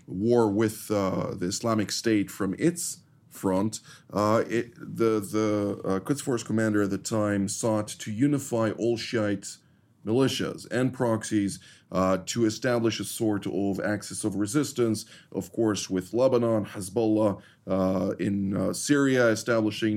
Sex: male